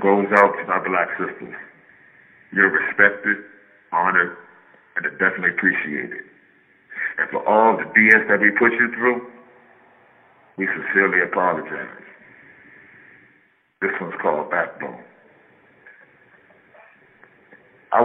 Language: English